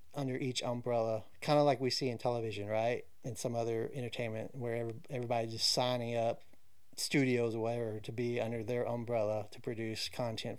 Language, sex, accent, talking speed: English, male, American, 175 wpm